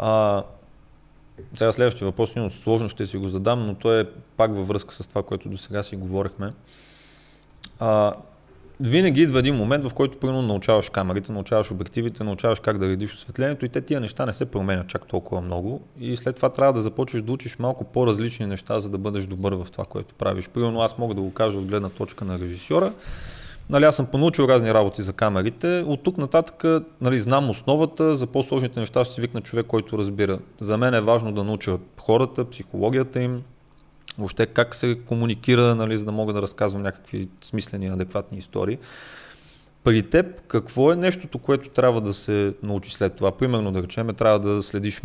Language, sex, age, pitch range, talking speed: Bulgarian, male, 30-49, 100-125 Hz, 195 wpm